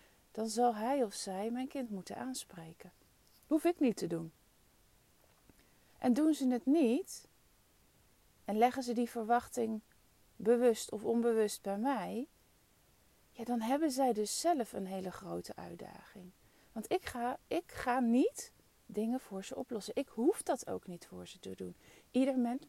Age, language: 40-59, Dutch